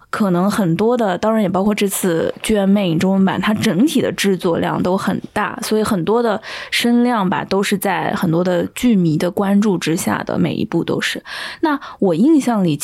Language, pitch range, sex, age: Chinese, 180-225 Hz, female, 20-39